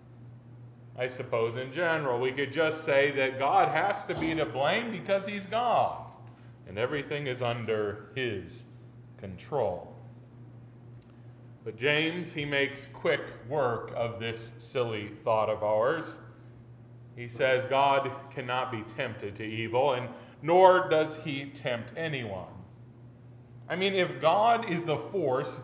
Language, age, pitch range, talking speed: English, 40-59, 120-145 Hz, 135 wpm